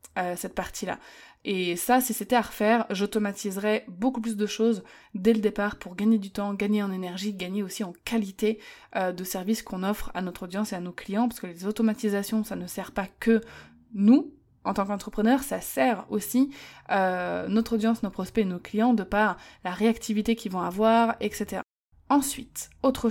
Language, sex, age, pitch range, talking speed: French, female, 20-39, 185-230 Hz, 190 wpm